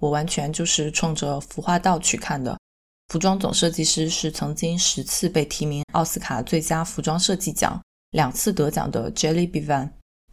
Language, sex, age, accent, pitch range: Chinese, female, 20-39, native, 155-195 Hz